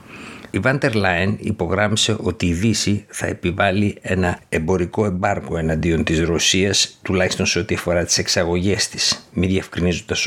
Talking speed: 140 wpm